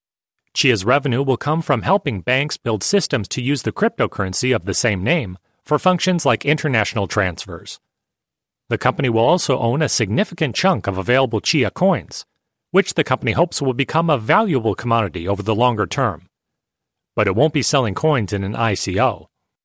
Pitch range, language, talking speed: 110-155 Hz, English, 170 wpm